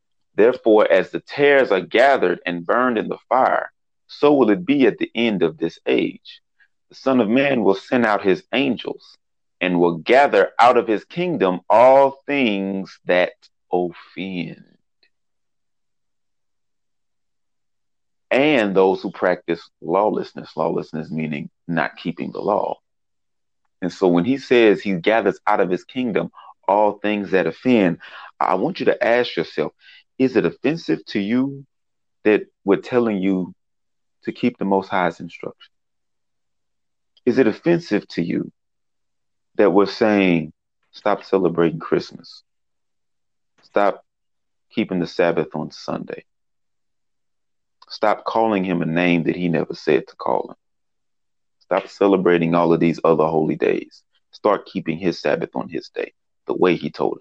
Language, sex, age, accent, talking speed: English, male, 30-49, American, 145 wpm